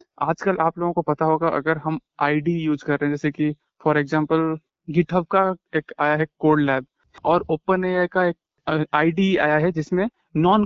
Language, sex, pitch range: Hindi, male, 150-190 Hz